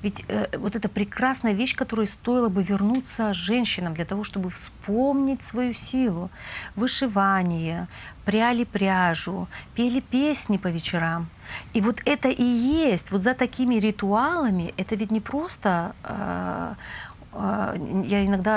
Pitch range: 190-240 Hz